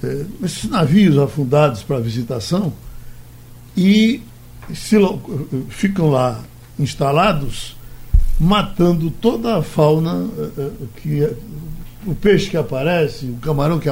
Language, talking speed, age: Portuguese, 85 wpm, 60-79